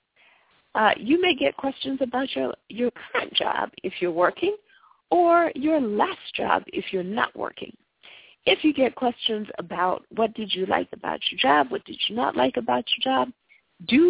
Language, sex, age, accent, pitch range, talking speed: English, female, 50-69, American, 190-300 Hz, 180 wpm